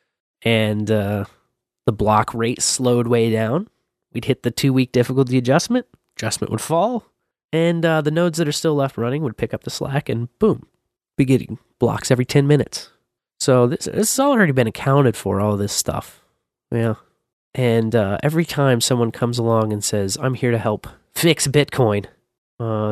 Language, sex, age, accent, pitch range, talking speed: English, male, 20-39, American, 110-140 Hz, 175 wpm